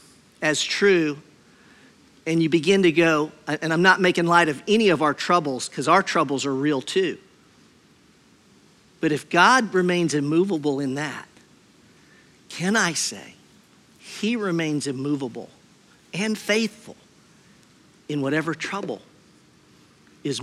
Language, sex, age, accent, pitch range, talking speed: English, male, 50-69, American, 145-180 Hz, 125 wpm